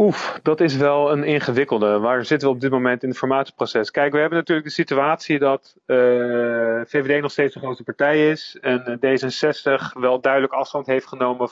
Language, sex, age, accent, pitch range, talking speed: Dutch, male, 40-59, Dutch, 125-150 Hz, 195 wpm